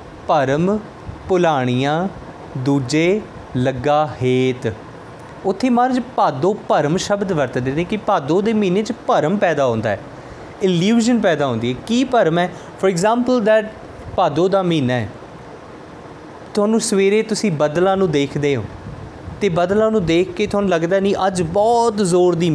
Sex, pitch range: male, 145-200 Hz